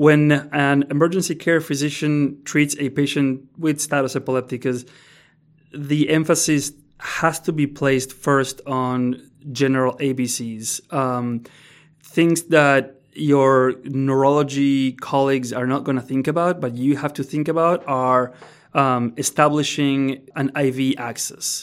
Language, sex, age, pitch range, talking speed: English, male, 30-49, 130-150 Hz, 125 wpm